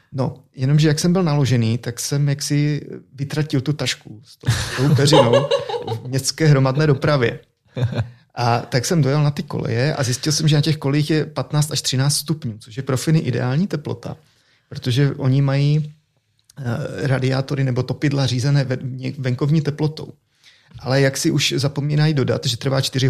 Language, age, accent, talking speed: Czech, 30-49, native, 160 wpm